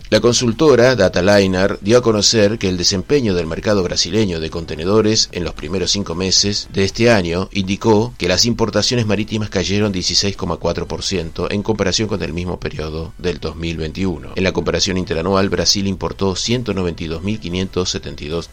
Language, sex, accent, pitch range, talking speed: Spanish, male, Argentinian, 85-105 Hz, 145 wpm